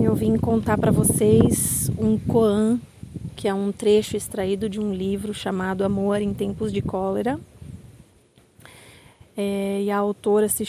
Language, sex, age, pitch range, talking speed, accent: Portuguese, female, 30-49, 195-230 Hz, 145 wpm, Brazilian